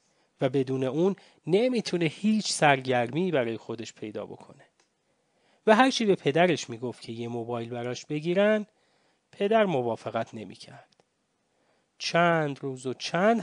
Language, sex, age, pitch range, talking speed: English, male, 30-49, 120-185 Hz, 125 wpm